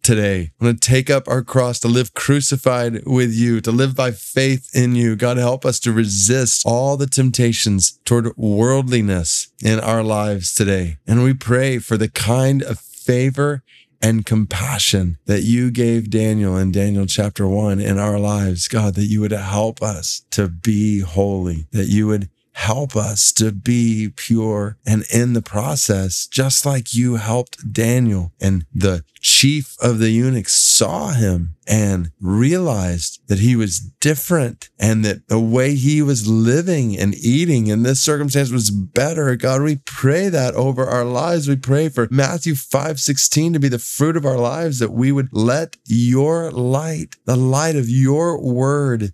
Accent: American